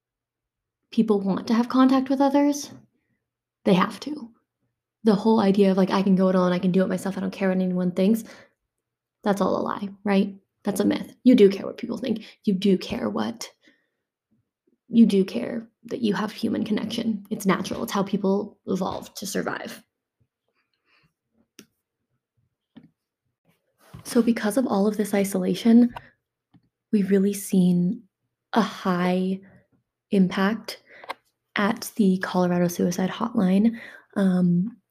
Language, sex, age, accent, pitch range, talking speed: English, female, 20-39, American, 190-230 Hz, 145 wpm